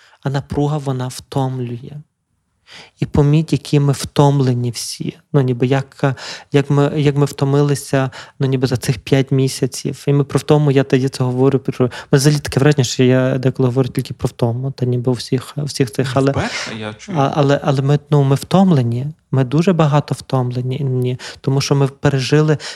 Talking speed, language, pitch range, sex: 155 wpm, Ukrainian, 130-145 Hz, male